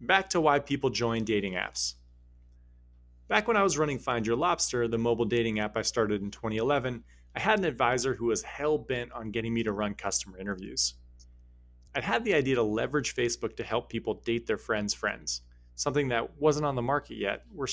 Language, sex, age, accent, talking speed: English, male, 30-49, American, 200 wpm